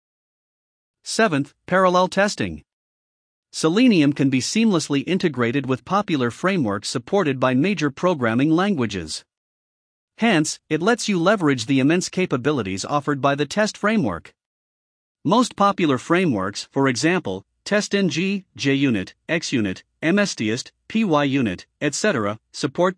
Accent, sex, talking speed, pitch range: American, male, 105 wpm, 130-190 Hz